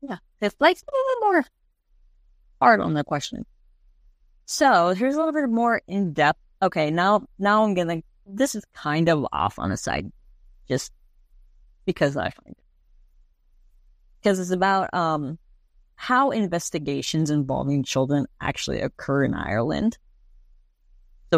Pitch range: 145-210 Hz